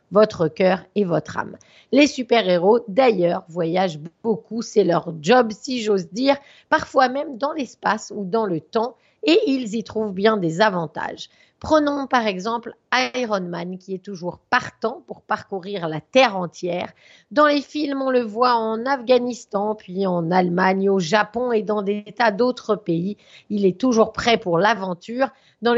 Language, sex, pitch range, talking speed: French, female, 190-245 Hz, 165 wpm